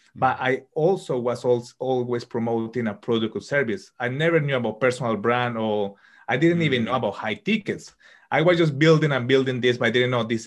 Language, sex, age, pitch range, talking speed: English, male, 30-49, 115-140 Hz, 205 wpm